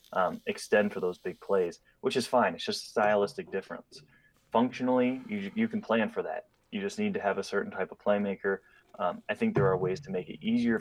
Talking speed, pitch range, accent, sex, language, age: 230 wpm, 95-120 Hz, American, male, English, 20-39